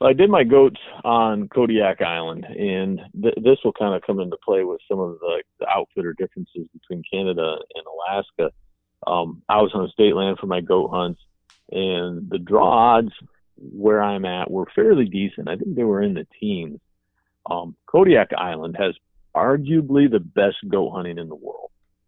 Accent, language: American, English